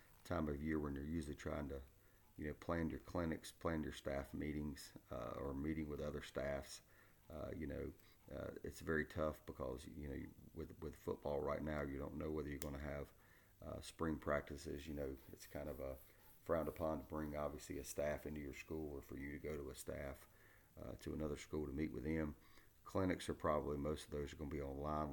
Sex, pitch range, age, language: male, 70-80 Hz, 40-59, English